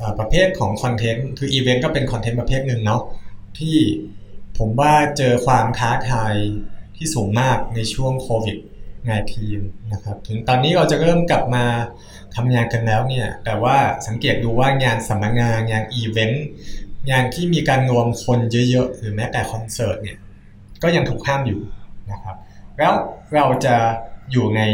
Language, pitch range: Thai, 105-130 Hz